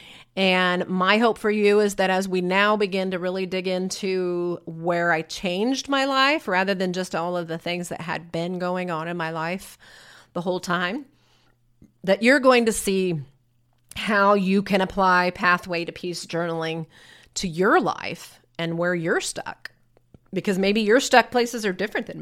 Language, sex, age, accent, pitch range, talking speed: English, female, 30-49, American, 170-195 Hz, 180 wpm